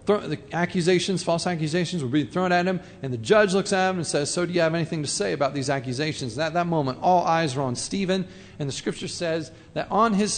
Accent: American